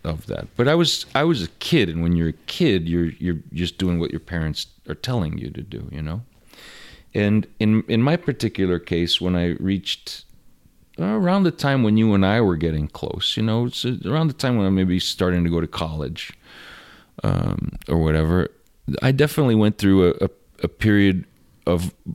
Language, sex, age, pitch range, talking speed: English, male, 40-59, 80-105 Hz, 200 wpm